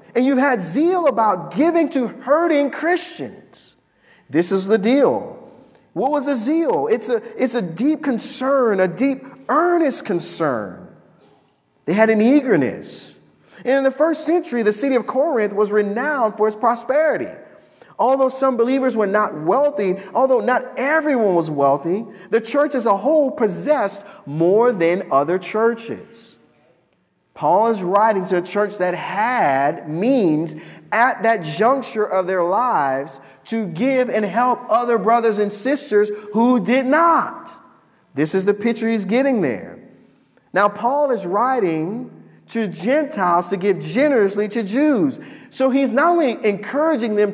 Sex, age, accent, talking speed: male, 40-59, American, 145 wpm